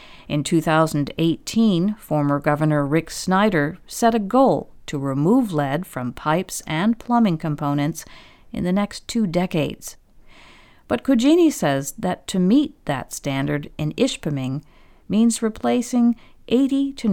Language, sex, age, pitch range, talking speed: English, female, 50-69, 155-235 Hz, 125 wpm